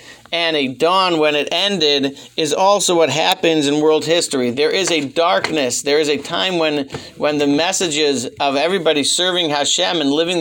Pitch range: 140-165 Hz